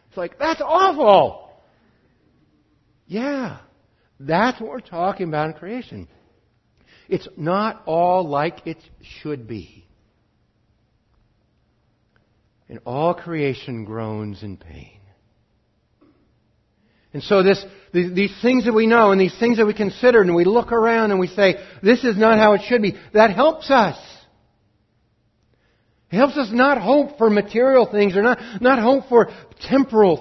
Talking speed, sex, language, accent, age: 135 wpm, male, English, American, 60-79